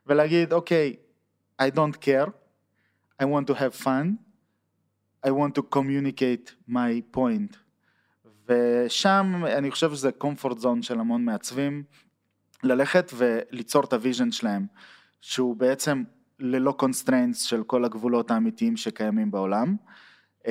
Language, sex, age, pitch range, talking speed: Hebrew, male, 20-39, 120-160 Hz, 120 wpm